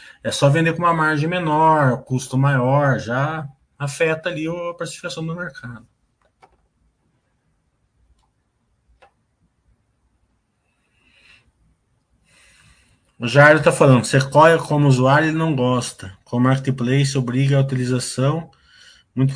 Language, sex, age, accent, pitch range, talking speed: Portuguese, male, 20-39, Brazilian, 120-150 Hz, 105 wpm